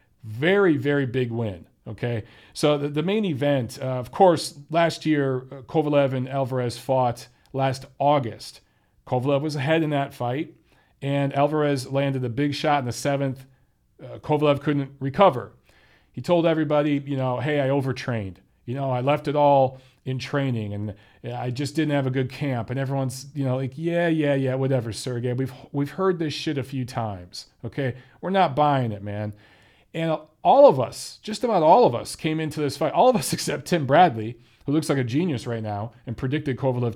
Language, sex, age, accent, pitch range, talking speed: English, male, 40-59, American, 125-165 Hz, 190 wpm